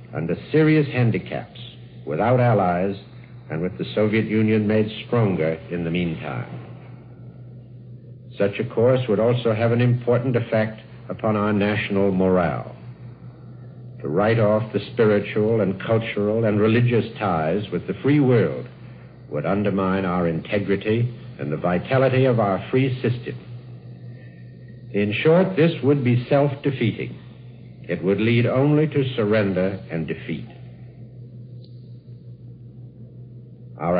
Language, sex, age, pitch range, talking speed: English, male, 70-89, 105-125 Hz, 120 wpm